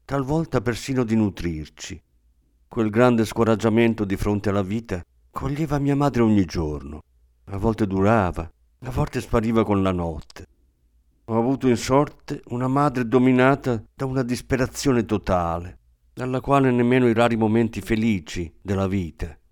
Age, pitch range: 50-69, 85-120 Hz